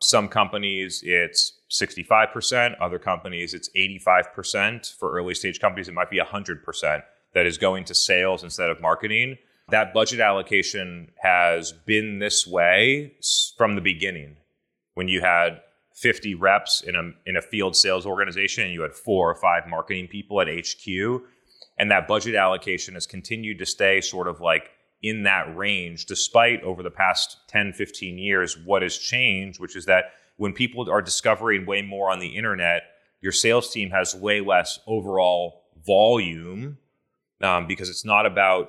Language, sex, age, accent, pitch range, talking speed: English, male, 30-49, American, 90-105 Hz, 170 wpm